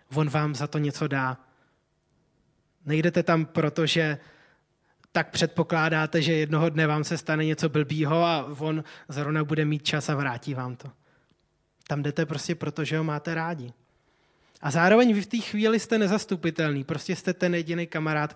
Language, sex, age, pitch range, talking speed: Czech, male, 20-39, 155-210 Hz, 165 wpm